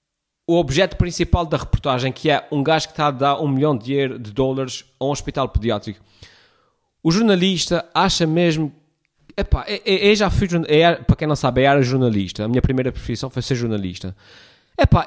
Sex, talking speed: male, 195 wpm